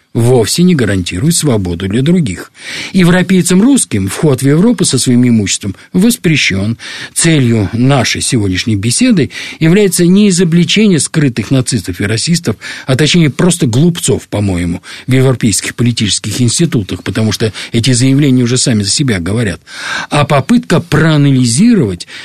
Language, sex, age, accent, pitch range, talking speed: Russian, male, 50-69, native, 110-165 Hz, 125 wpm